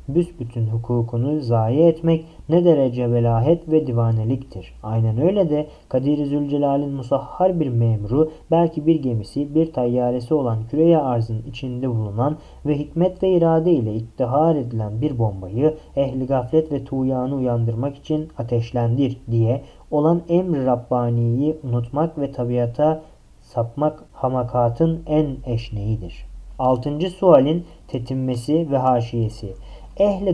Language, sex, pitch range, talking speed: Turkish, male, 120-155 Hz, 120 wpm